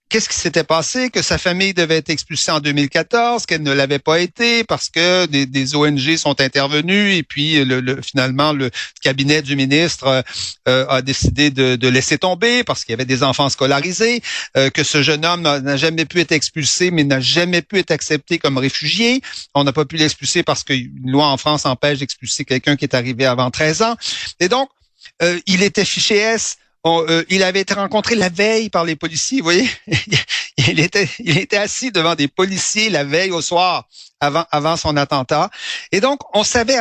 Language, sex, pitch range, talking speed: French, male, 145-200 Hz, 200 wpm